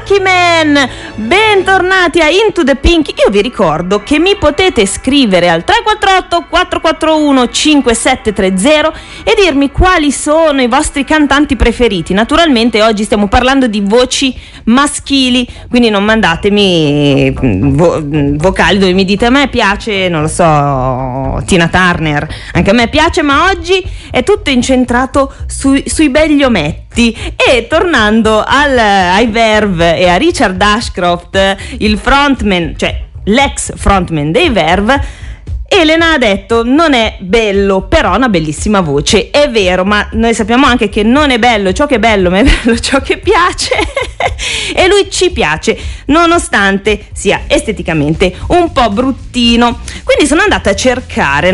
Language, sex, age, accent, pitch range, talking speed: Italian, female, 30-49, native, 195-300 Hz, 140 wpm